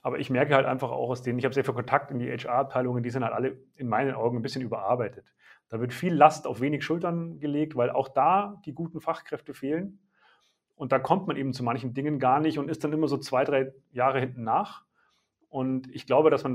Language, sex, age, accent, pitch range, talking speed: German, male, 40-59, German, 125-155 Hz, 240 wpm